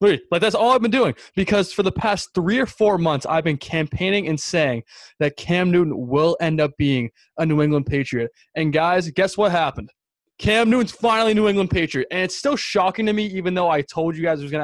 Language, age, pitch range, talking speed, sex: English, 20-39, 145-195 Hz, 230 wpm, male